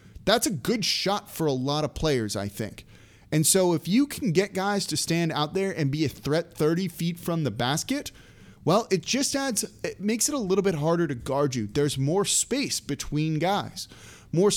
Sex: male